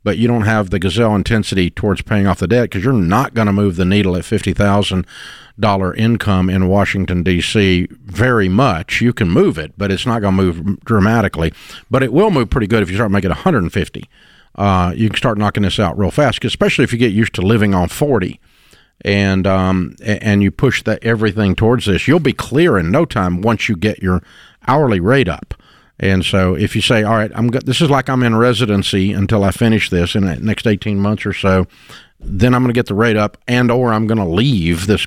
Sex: male